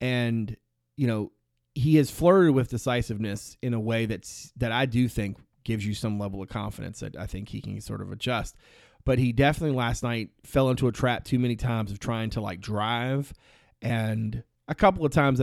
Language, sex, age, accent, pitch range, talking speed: English, male, 30-49, American, 105-130 Hz, 200 wpm